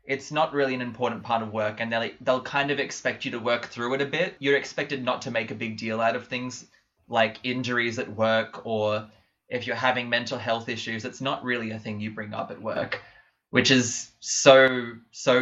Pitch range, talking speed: 110-135 Hz, 225 wpm